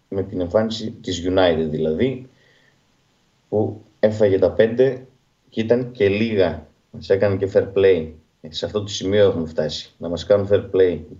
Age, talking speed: 30-49, 160 wpm